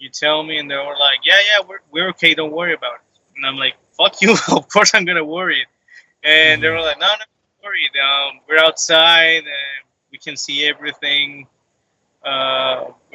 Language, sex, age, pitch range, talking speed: English, male, 20-39, 135-155 Hz, 205 wpm